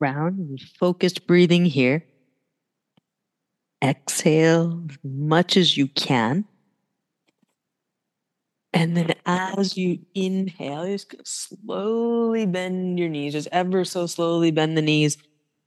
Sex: female